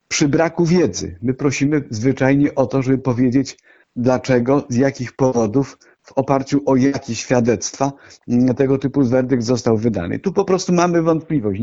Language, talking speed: Polish, 150 wpm